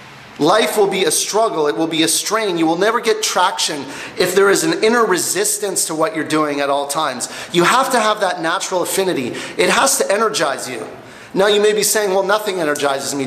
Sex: male